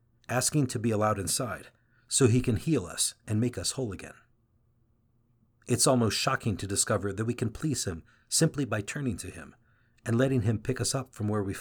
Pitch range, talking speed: 110-125 Hz, 200 wpm